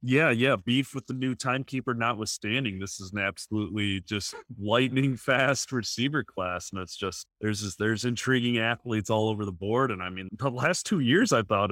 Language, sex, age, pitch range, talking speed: English, male, 30-49, 95-125 Hz, 190 wpm